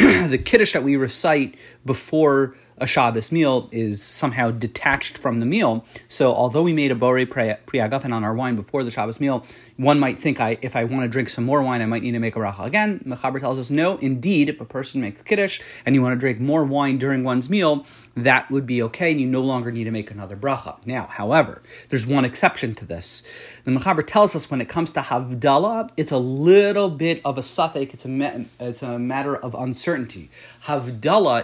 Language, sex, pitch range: English, male, 120-150 Hz